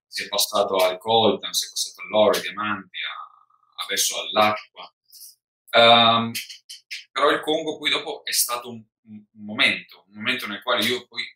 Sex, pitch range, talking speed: male, 100-120 Hz, 160 wpm